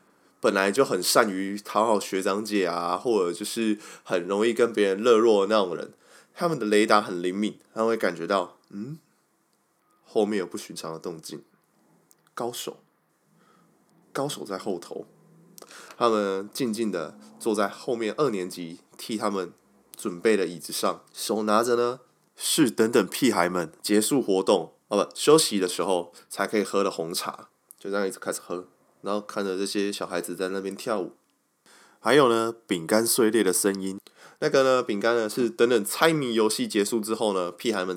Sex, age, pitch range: male, 20-39, 90-115 Hz